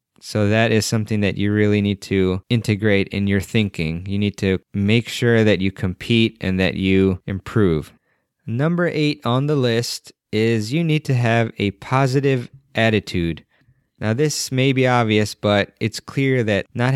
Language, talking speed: English, 170 wpm